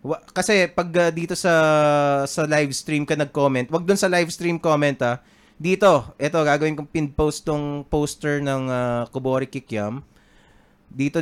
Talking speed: 155 wpm